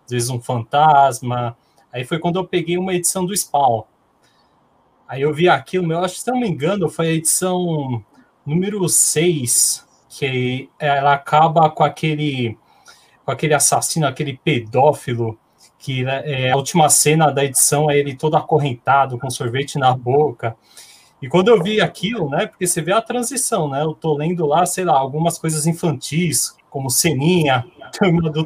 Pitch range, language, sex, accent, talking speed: 125-170 Hz, Portuguese, male, Brazilian, 165 wpm